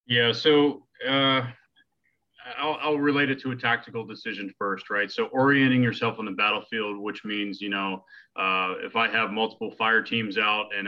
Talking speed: 175 wpm